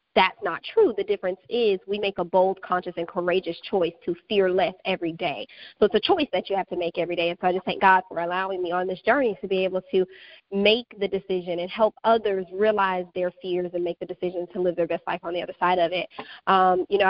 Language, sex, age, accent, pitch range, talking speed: English, female, 20-39, American, 180-200 Hz, 255 wpm